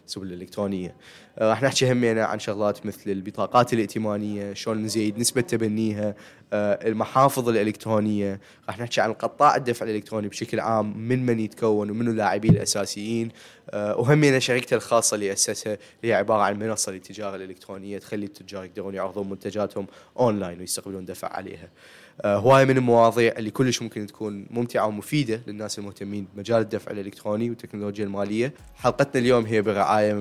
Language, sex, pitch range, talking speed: Arabic, male, 100-110 Hz, 140 wpm